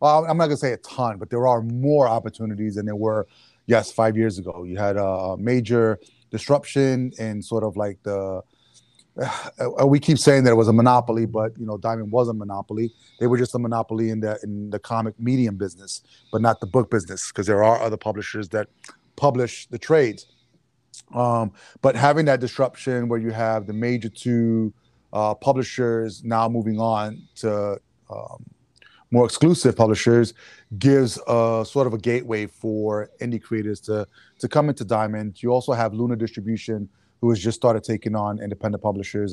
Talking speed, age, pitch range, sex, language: 175 wpm, 30-49, 110-125 Hz, male, English